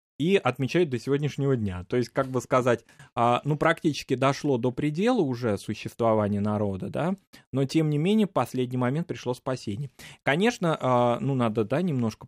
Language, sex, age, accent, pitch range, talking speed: Russian, male, 20-39, native, 110-140 Hz, 160 wpm